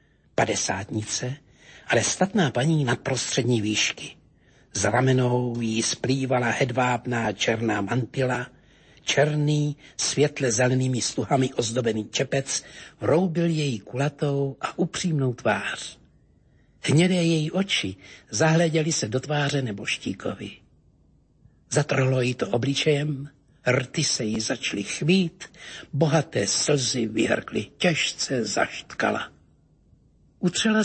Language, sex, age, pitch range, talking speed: Slovak, male, 60-79, 115-145 Hz, 95 wpm